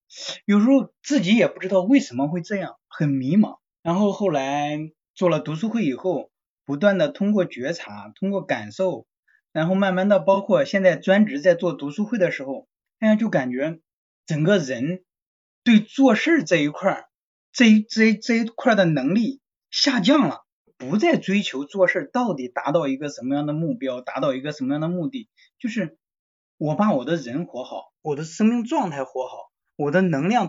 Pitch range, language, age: 155-235 Hz, Chinese, 20-39